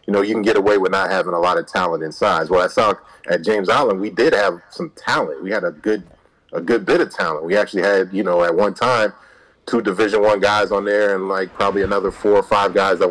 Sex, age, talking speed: male, 30-49, 265 wpm